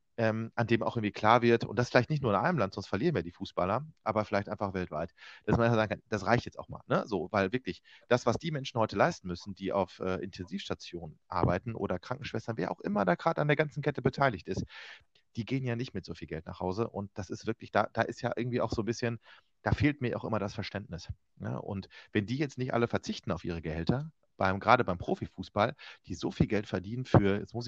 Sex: male